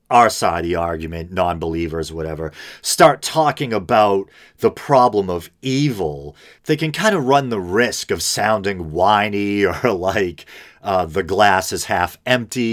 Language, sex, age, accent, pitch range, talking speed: English, male, 40-59, American, 85-115 Hz, 140 wpm